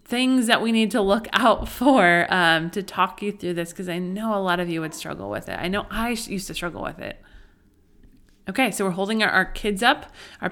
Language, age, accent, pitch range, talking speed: English, 30-49, American, 185-245 Hz, 240 wpm